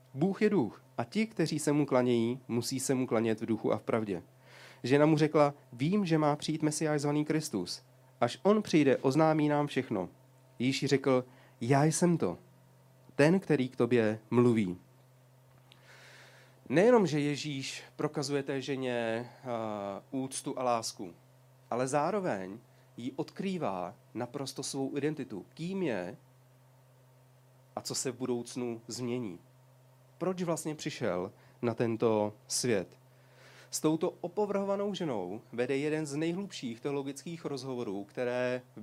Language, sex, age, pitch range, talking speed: Czech, male, 40-59, 120-145 Hz, 135 wpm